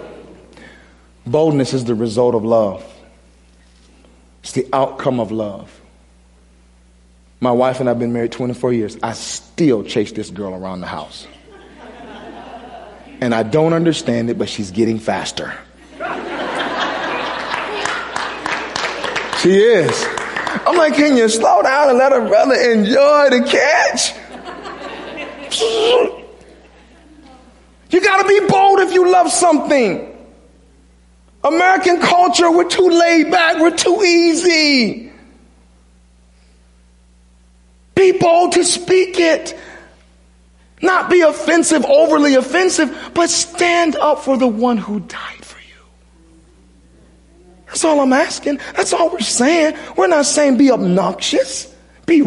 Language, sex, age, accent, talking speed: English, male, 30-49, American, 120 wpm